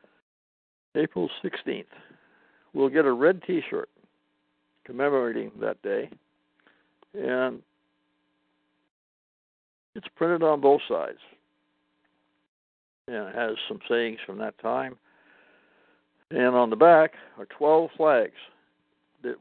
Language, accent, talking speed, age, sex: English, American, 100 wpm, 60-79, male